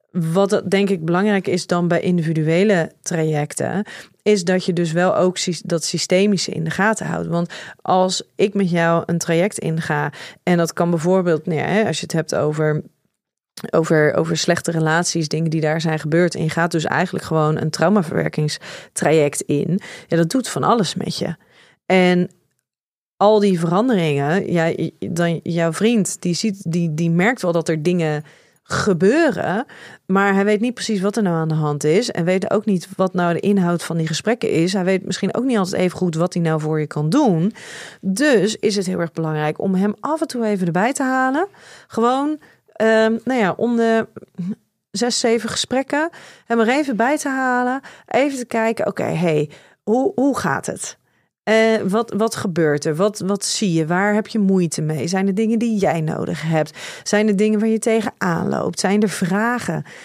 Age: 30-49